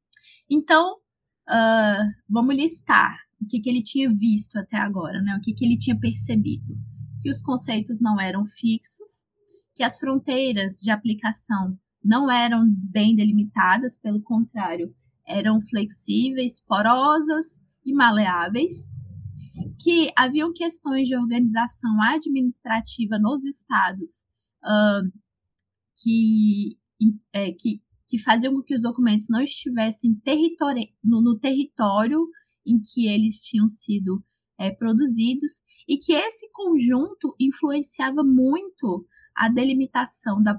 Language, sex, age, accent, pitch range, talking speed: Portuguese, female, 20-39, Brazilian, 210-275 Hz, 110 wpm